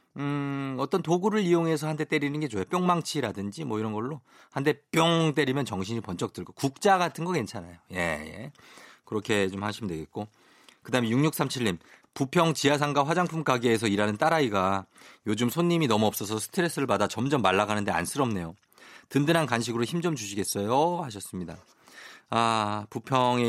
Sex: male